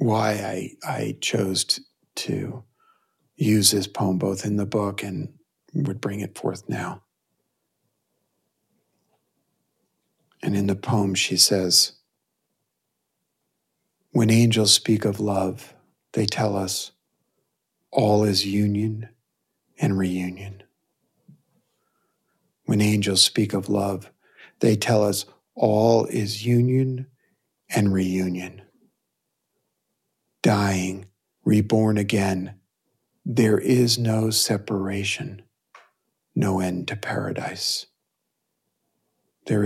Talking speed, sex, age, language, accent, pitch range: 95 wpm, male, 50-69, English, American, 95-115 Hz